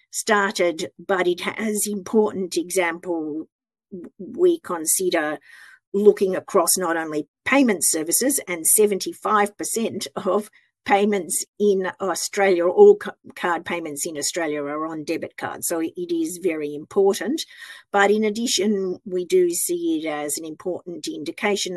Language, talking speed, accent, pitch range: English, 125 wpm, Australian, 160-210 Hz